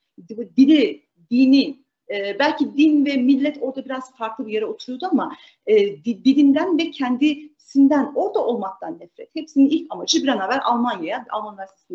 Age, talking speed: 40-59, 140 wpm